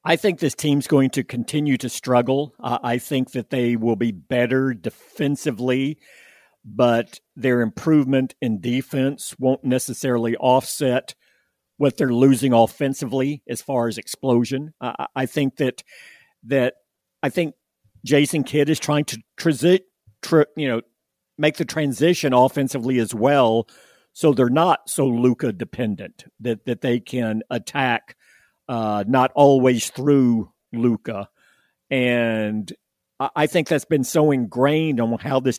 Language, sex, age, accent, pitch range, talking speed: English, male, 50-69, American, 115-140 Hz, 140 wpm